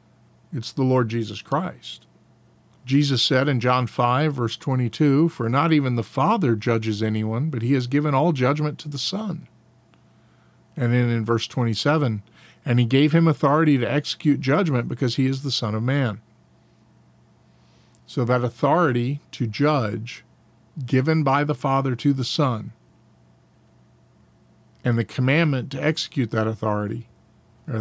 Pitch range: 115-145 Hz